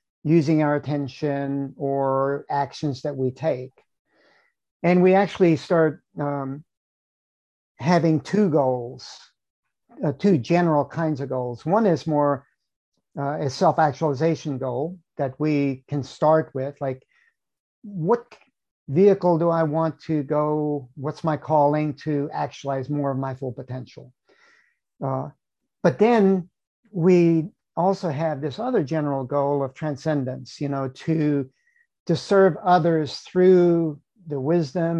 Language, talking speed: English, 125 wpm